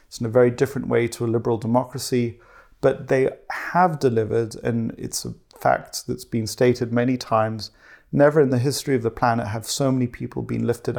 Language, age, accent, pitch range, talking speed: English, 40-59, British, 115-135 Hz, 195 wpm